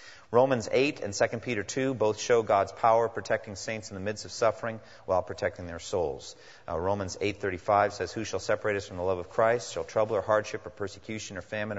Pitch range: 95-115 Hz